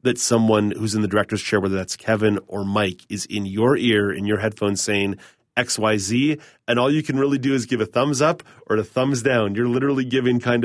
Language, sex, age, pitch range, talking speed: English, male, 30-49, 105-125 Hz, 225 wpm